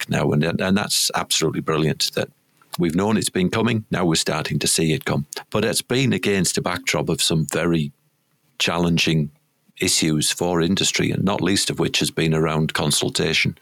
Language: English